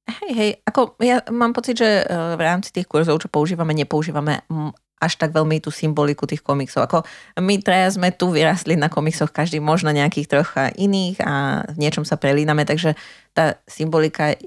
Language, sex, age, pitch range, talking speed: Slovak, female, 30-49, 150-180 Hz, 175 wpm